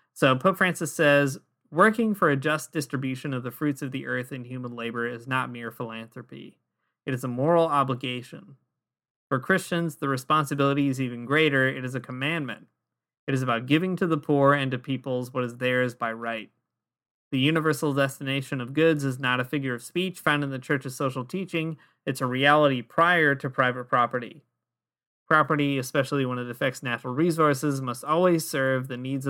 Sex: male